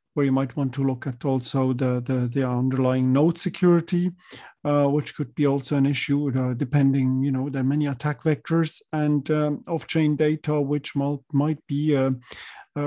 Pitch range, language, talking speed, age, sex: 135-165 Hz, English, 190 wpm, 50-69, male